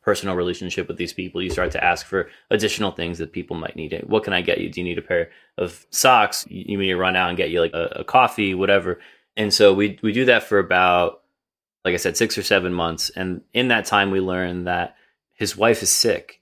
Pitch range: 85-105 Hz